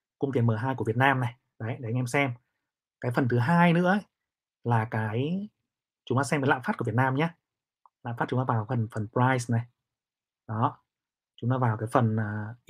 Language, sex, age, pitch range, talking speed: Vietnamese, male, 20-39, 120-150 Hz, 215 wpm